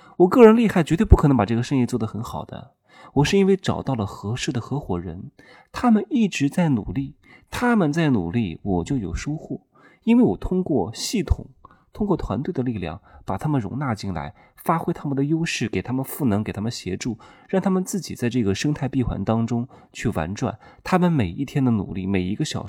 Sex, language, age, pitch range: male, Chinese, 20-39, 100-160 Hz